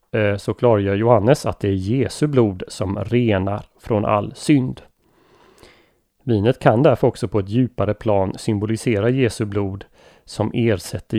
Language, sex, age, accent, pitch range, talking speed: Swedish, male, 30-49, native, 100-120 Hz, 140 wpm